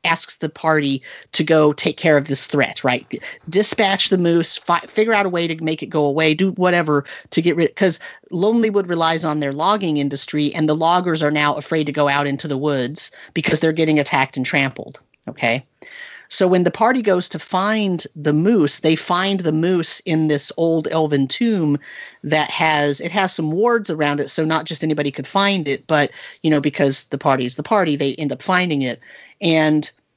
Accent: American